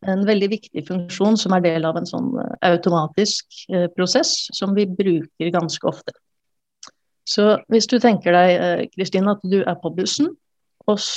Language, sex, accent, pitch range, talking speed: English, female, Swedish, 170-200 Hz, 175 wpm